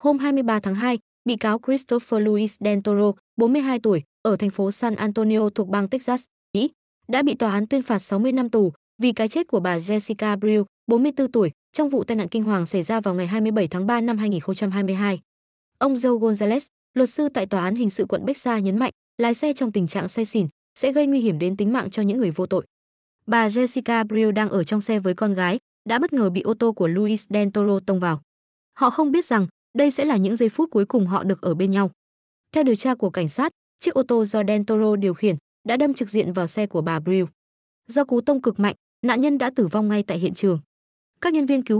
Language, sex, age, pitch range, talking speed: Vietnamese, female, 20-39, 195-245 Hz, 235 wpm